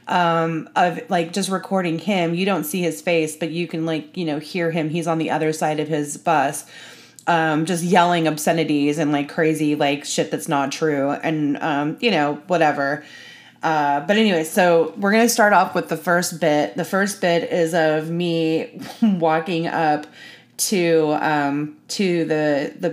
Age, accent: 30-49, American